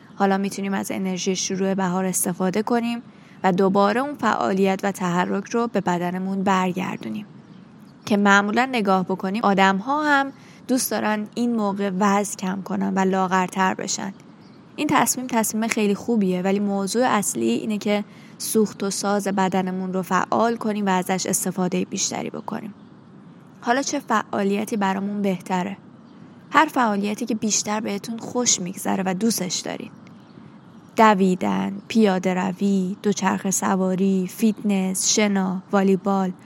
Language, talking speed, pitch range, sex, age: Persian, 130 wpm, 190-220 Hz, female, 20-39